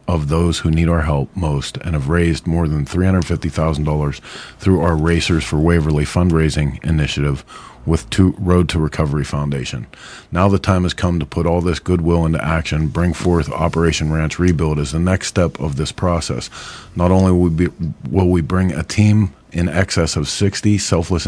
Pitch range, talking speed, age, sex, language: 75-90 Hz, 175 wpm, 40-59, male, English